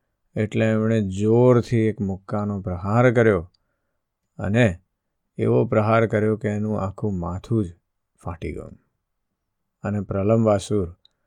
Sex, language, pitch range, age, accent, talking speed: male, Gujarati, 105-125 Hz, 50-69, native, 75 wpm